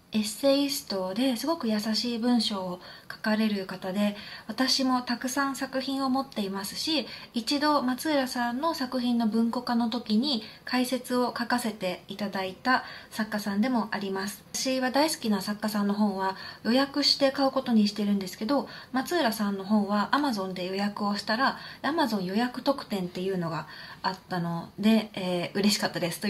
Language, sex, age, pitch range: Japanese, female, 20-39, 195-260 Hz